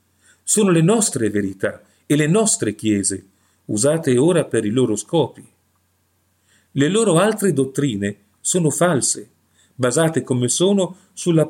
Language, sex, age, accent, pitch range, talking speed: Italian, male, 40-59, native, 110-155 Hz, 125 wpm